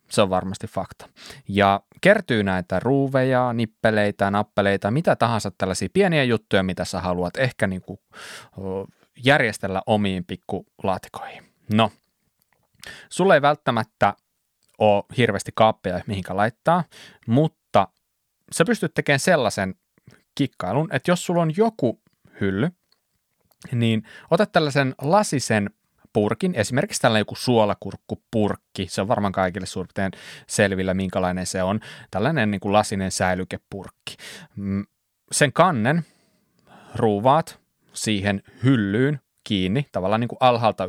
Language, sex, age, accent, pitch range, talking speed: Finnish, male, 30-49, native, 100-140 Hz, 115 wpm